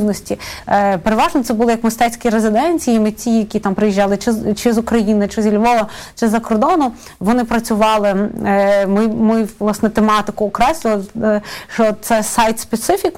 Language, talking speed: Ukrainian, 140 wpm